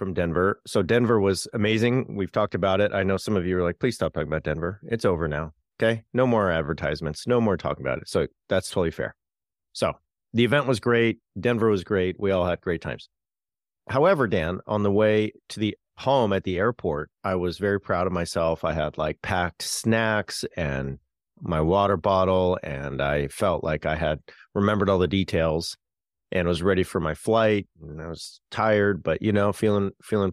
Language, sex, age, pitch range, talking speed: English, male, 40-59, 85-105 Hz, 200 wpm